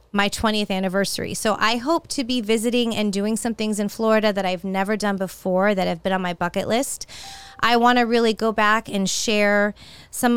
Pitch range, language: 190-235 Hz, English